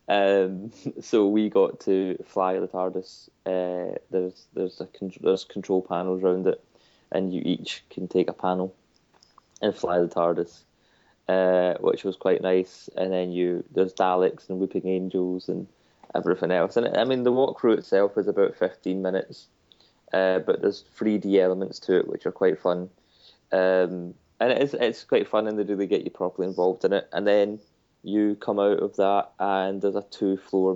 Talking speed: 185 wpm